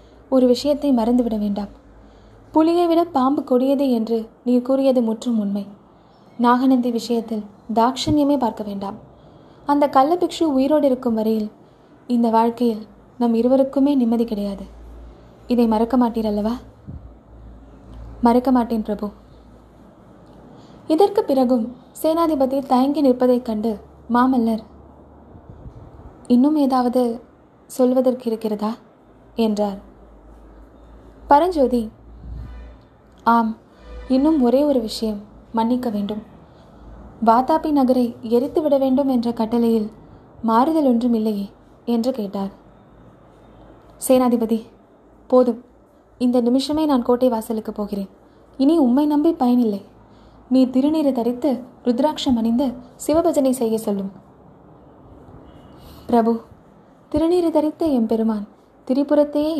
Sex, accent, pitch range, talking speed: female, native, 225-270 Hz, 90 wpm